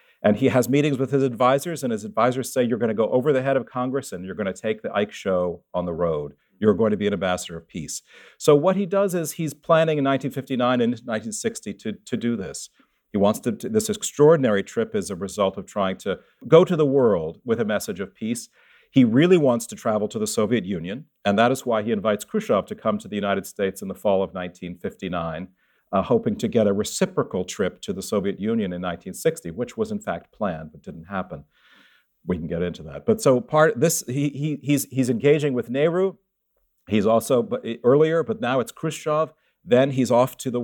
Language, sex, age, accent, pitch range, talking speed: English, male, 50-69, American, 115-170 Hz, 225 wpm